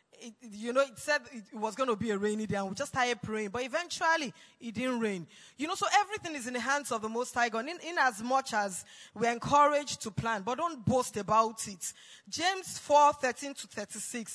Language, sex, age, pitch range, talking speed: English, female, 20-39, 225-285 Hz, 225 wpm